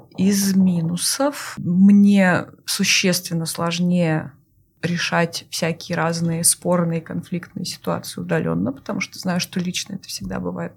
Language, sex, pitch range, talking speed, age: Russian, female, 170-195 Hz, 110 wpm, 20-39